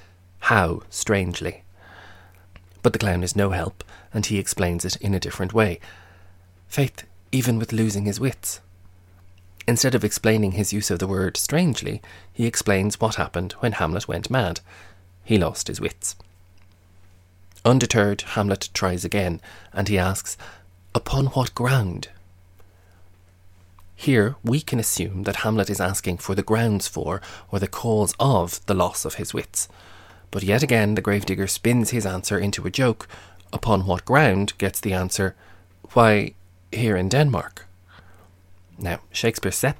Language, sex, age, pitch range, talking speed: English, male, 30-49, 90-110 Hz, 150 wpm